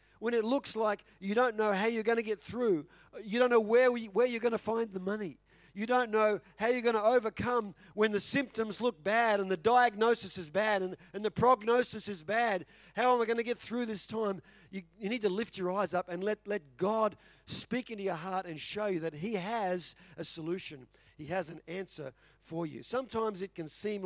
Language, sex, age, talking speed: English, male, 50-69, 230 wpm